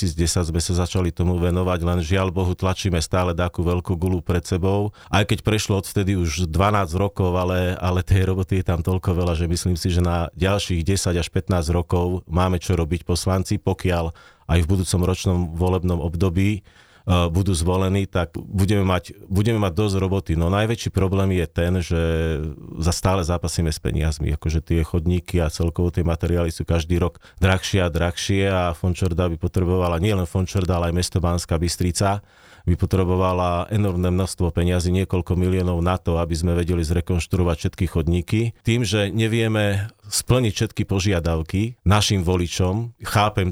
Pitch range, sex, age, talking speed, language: 85-95 Hz, male, 30-49, 170 wpm, Slovak